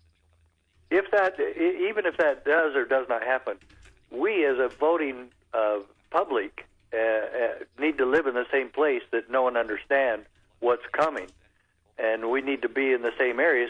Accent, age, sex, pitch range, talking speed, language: American, 60-79, male, 105-140 Hz, 175 wpm, English